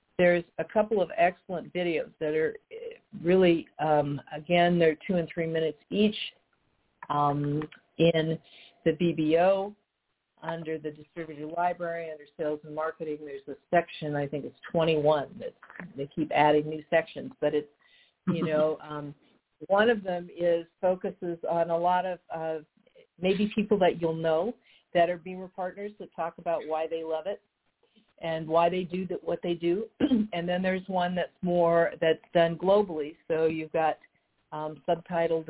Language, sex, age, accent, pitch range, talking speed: English, female, 50-69, American, 160-195 Hz, 160 wpm